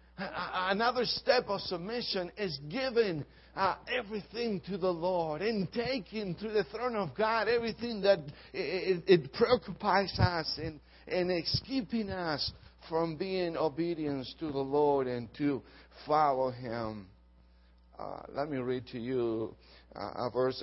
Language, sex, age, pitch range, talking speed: English, male, 60-79, 100-150 Hz, 135 wpm